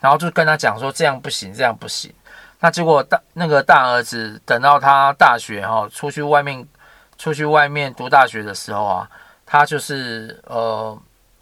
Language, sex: Chinese, male